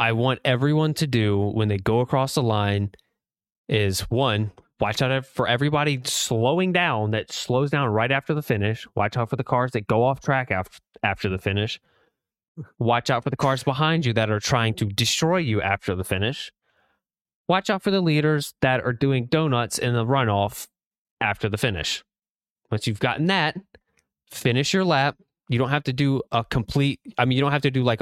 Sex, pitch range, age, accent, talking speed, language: male, 105-135 Hz, 20-39, American, 195 wpm, English